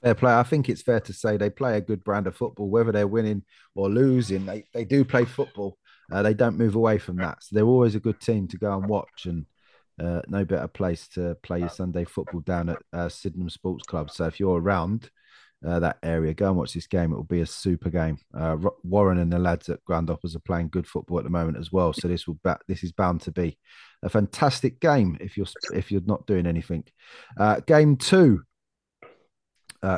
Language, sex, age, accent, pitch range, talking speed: English, male, 30-49, British, 90-105 Hz, 225 wpm